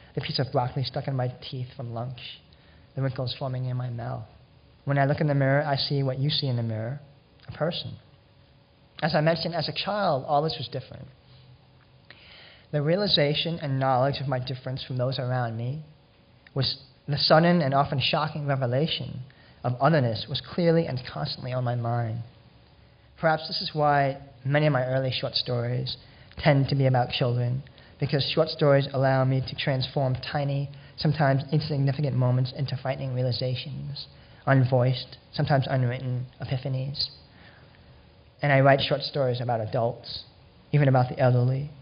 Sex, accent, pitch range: male, American, 125-145 Hz